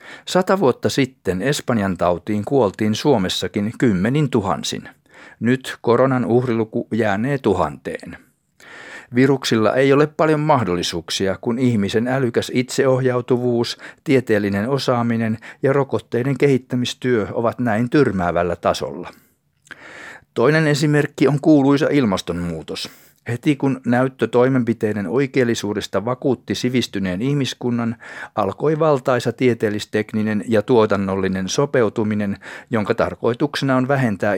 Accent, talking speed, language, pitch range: native, 95 wpm, Finnish, 105-130 Hz